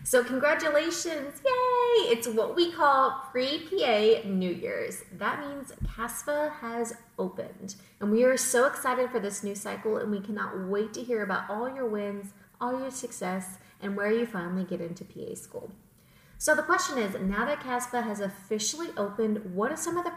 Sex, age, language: female, 30-49, English